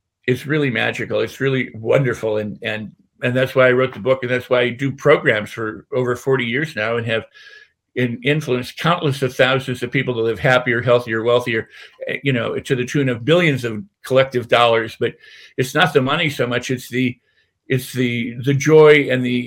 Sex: male